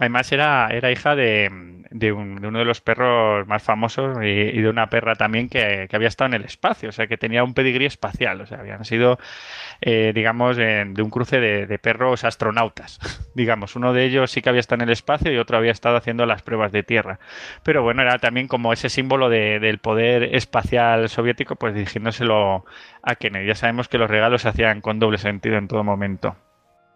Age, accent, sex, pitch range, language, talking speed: 20-39, Spanish, male, 105-125 Hz, Spanish, 210 wpm